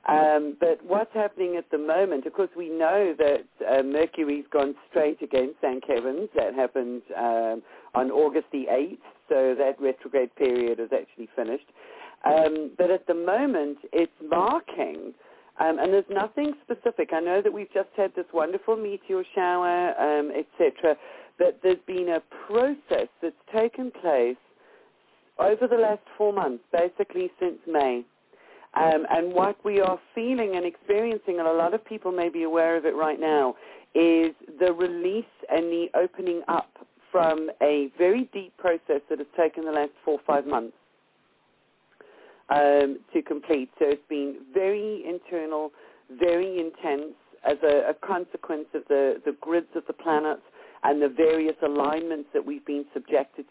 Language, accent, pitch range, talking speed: English, British, 150-205 Hz, 165 wpm